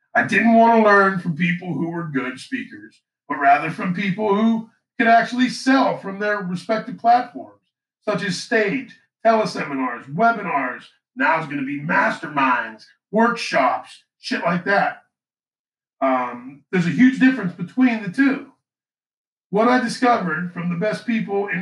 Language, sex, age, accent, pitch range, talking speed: English, male, 50-69, American, 165-235 Hz, 150 wpm